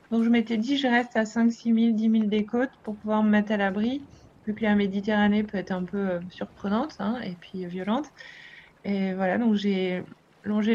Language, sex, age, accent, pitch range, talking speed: French, female, 20-39, French, 195-225 Hz, 210 wpm